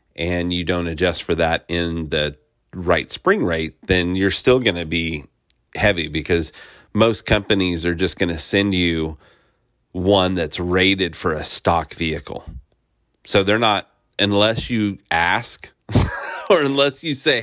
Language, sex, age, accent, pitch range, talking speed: English, male, 30-49, American, 85-105 Hz, 150 wpm